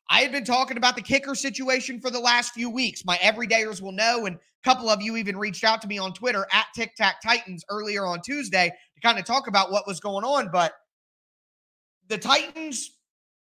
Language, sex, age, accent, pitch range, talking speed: English, male, 20-39, American, 200-250 Hz, 215 wpm